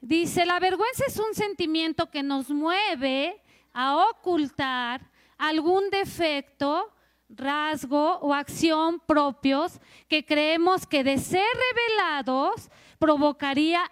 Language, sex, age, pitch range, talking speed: Spanish, female, 40-59, 270-345 Hz, 105 wpm